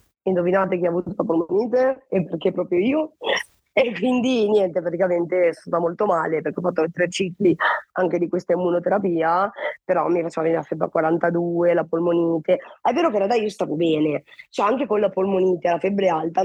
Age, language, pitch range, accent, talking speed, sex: 20-39, Italian, 165-200 Hz, native, 195 wpm, female